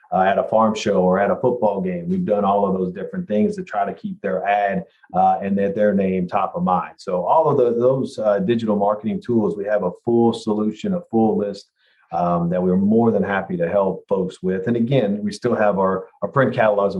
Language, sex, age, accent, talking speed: English, male, 40-59, American, 240 wpm